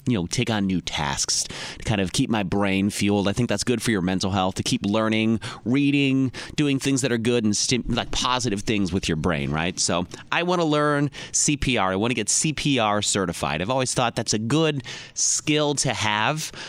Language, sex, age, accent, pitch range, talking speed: English, male, 30-49, American, 105-135 Hz, 215 wpm